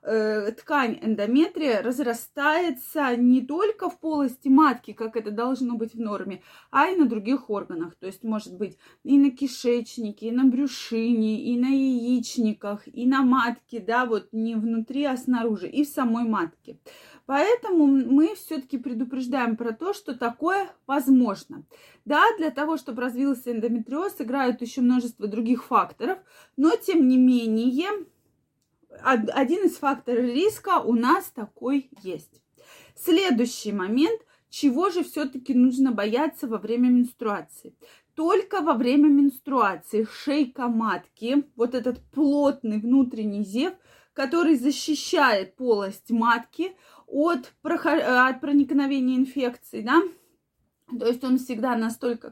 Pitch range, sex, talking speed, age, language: 235-300 Hz, female, 125 wpm, 20-39, Russian